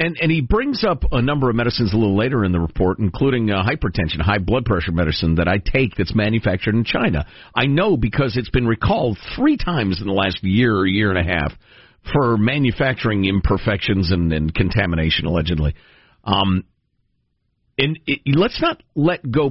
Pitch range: 100-155 Hz